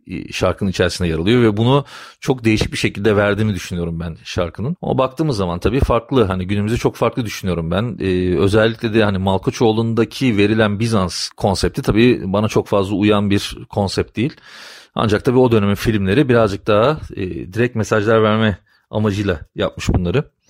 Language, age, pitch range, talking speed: Turkish, 40-59, 100-115 Hz, 160 wpm